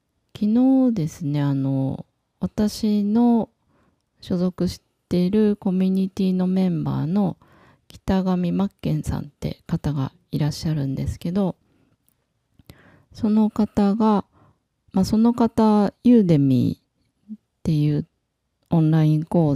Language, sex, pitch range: Japanese, female, 145-200 Hz